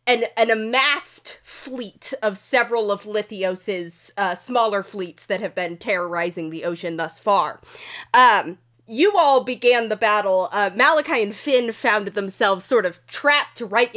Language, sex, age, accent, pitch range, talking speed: English, female, 20-39, American, 190-240 Hz, 150 wpm